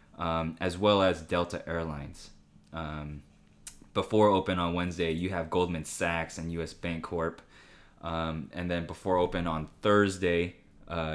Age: 20-39